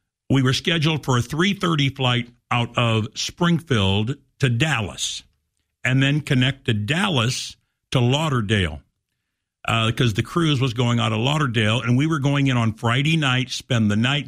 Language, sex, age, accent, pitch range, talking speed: English, male, 60-79, American, 110-145 Hz, 160 wpm